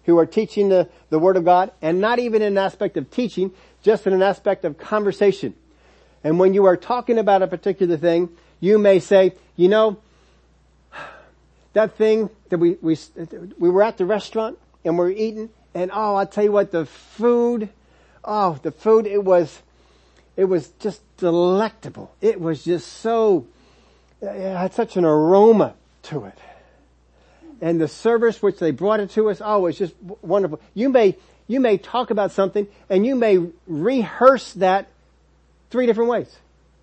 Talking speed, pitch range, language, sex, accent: 170 wpm, 160-210 Hz, English, male, American